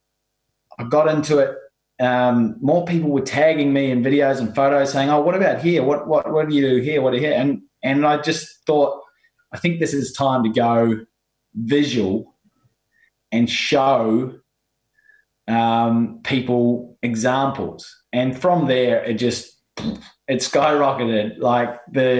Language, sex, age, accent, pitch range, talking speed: English, male, 20-39, Australian, 125-150 Hz, 150 wpm